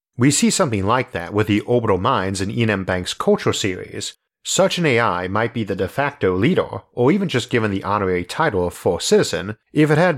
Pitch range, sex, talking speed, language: 95-130 Hz, male, 220 wpm, English